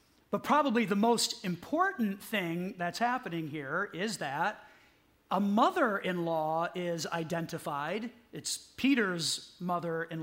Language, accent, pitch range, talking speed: English, American, 165-215 Hz, 125 wpm